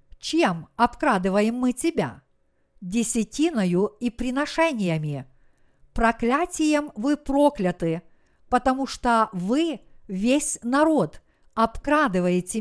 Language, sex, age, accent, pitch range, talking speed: Russian, female, 50-69, native, 210-275 Hz, 75 wpm